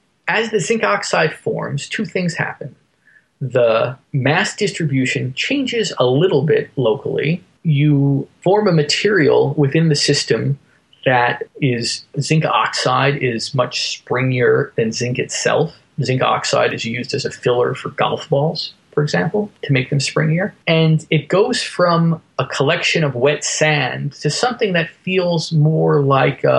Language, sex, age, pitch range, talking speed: English, male, 20-39, 135-160 Hz, 145 wpm